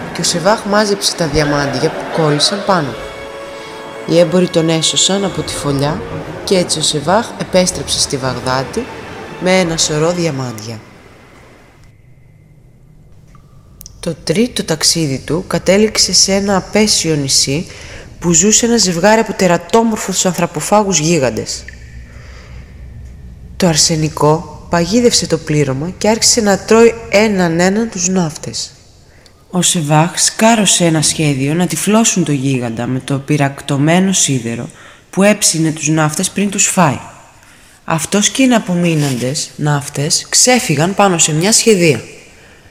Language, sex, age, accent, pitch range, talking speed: Greek, female, 20-39, native, 140-185 Hz, 120 wpm